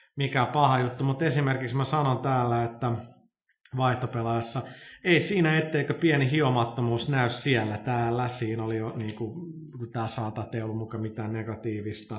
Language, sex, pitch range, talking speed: Finnish, male, 115-140 Hz, 135 wpm